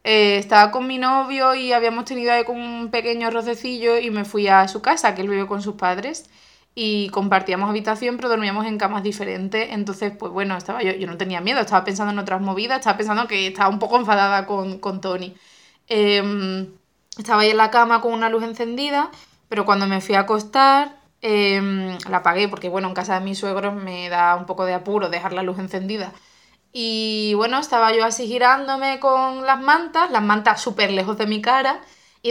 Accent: Spanish